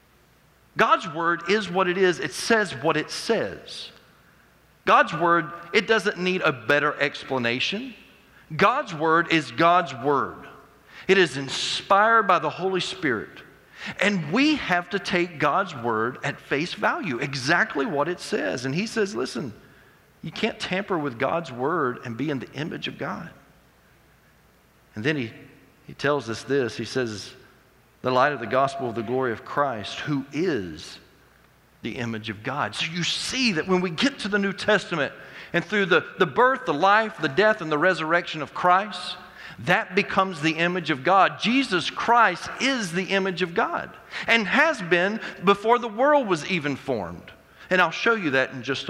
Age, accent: 40-59, American